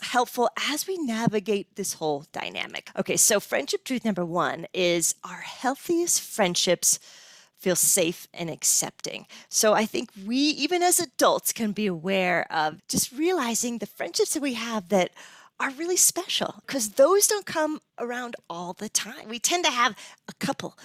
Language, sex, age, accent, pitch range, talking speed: English, female, 40-59, American, 180-255 Hz, 165 wpm